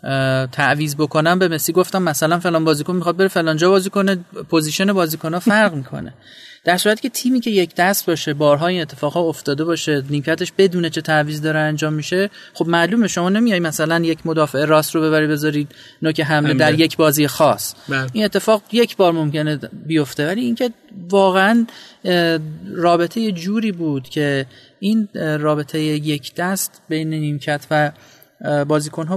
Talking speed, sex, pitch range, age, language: 155 wpm, male, 150-190 Hz, 30-49, Persian